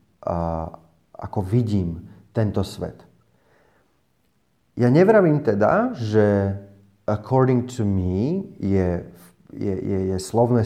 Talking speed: 95 wpm